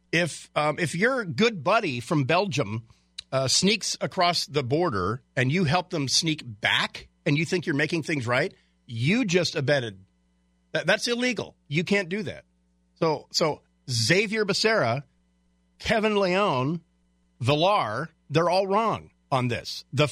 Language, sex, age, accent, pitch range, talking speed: English, male, 40-59, American, 115-180 Hz, 145 wpm